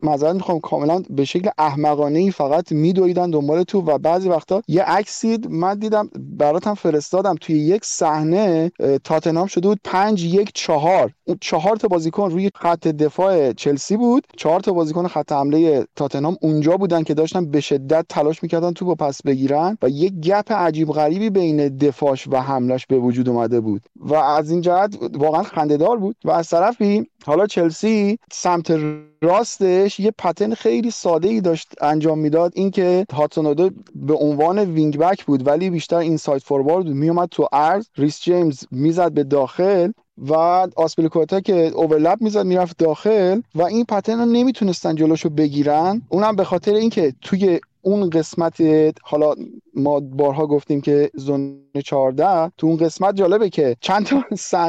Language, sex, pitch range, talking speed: Persian, male, 150-200 Hz, 160 wpm